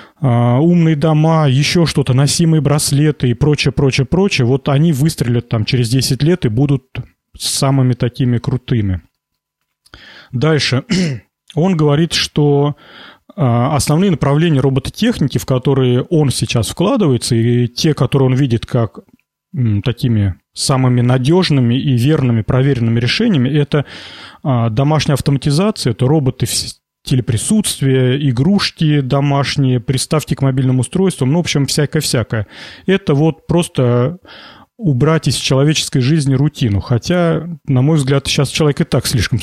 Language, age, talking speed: Russian, 30-49, 125 wpm